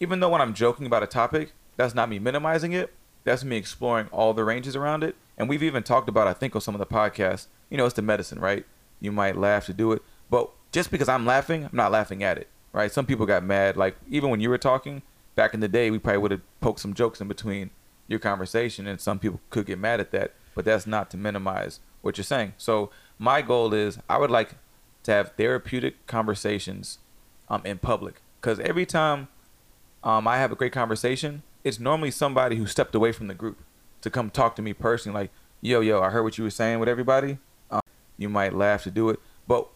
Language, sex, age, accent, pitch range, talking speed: English, male, 30-49, American, 105-130 Hz, 230 wpm